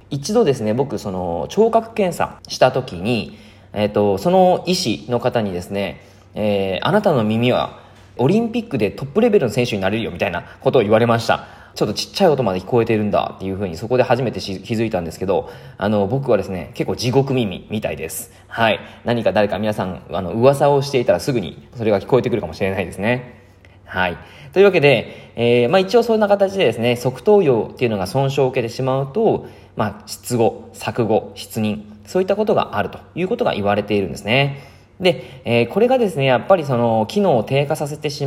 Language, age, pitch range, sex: Japanese, 20-39, 100-140 Hz, male